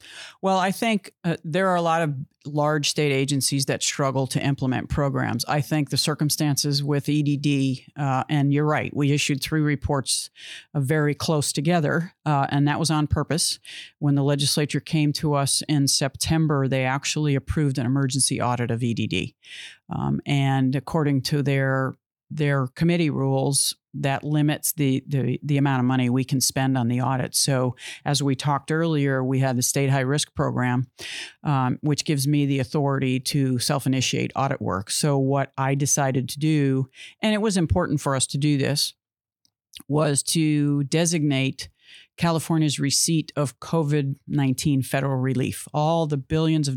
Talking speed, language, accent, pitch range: 165 wpm, English, American, 135-155 Hz